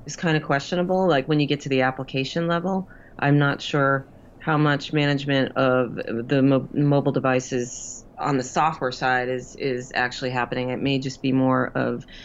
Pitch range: 120-145 Hz